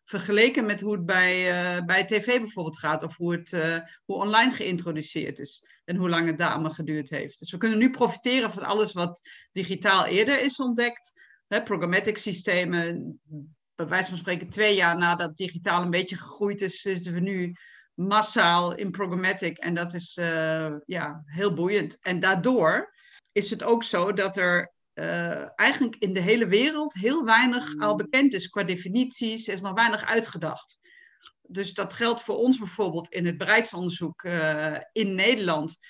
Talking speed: 165 wpm